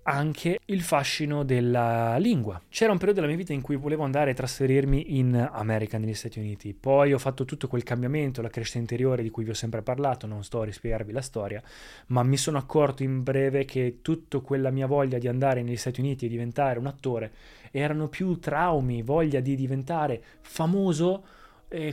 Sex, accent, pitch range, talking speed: male, native, 115-145 Hz, 195 wpm